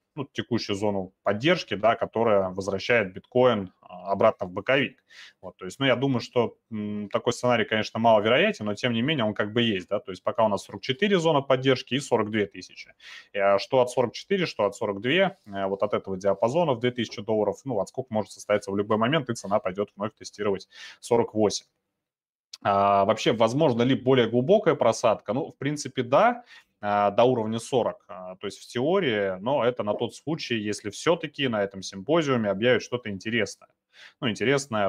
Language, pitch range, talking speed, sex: Russian, 100-125 Hz, 175 wpm, male